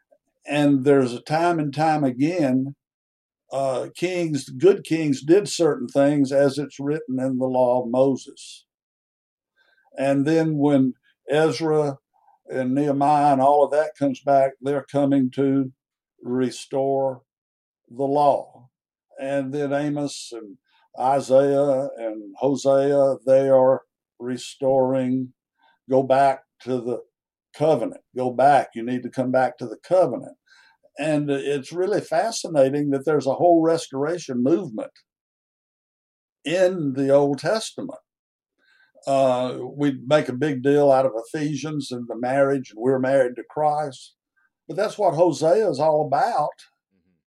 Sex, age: male, 60-79